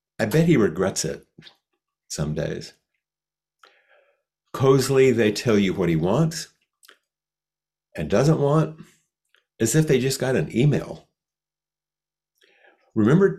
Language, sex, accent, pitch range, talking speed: English, male, American, 110-165 Hz, 110 wpm